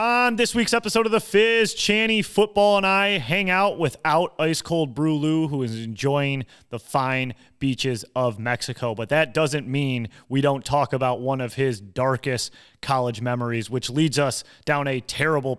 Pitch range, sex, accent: 115-145 Hz, male, American